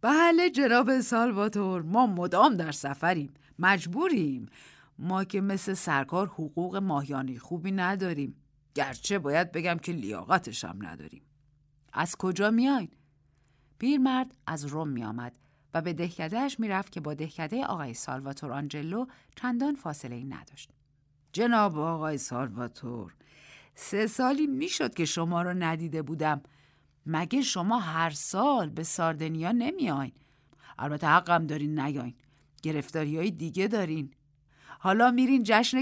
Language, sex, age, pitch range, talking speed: Persian, female, 50-69, 145-200 Hz, 120 wpm